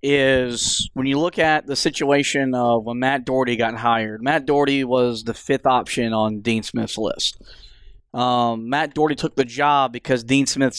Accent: American